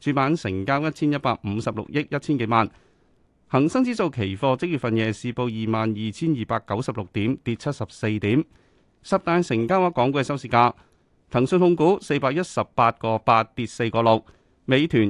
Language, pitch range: Chinese, 110-145 Hz